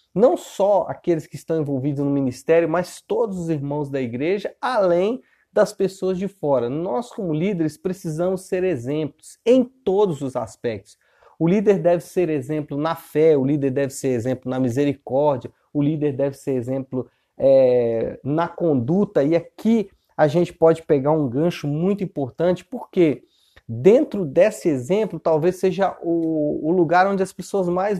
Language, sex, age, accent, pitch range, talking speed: Portuguese, male, 30-49, Brazilian, 145-190 Hz, 160 wpm